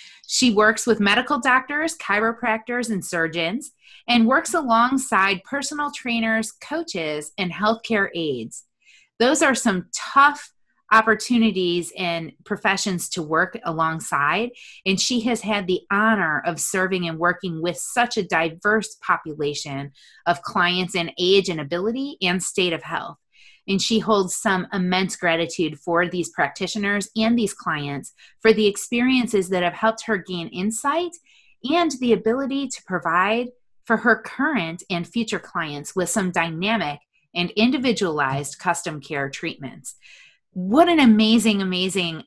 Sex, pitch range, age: female, 170-230 Hz, 30-49